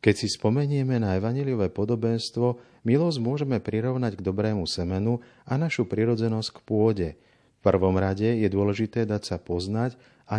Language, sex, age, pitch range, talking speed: Slovak, male, 40-59, 95-125 Hz, 150 wpm